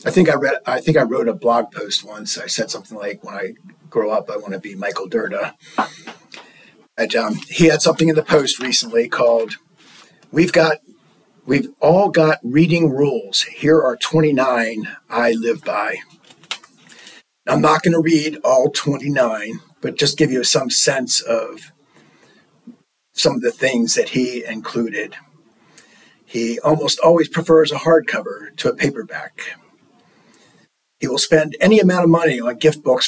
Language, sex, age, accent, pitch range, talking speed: English, male, 50-69, American, 125-170 Hz, 165 wpm